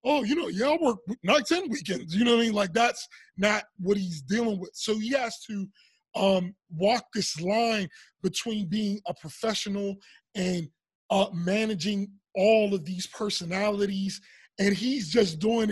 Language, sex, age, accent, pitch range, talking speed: English, male, 20-39, American, 195-230 Hz, 170 wpm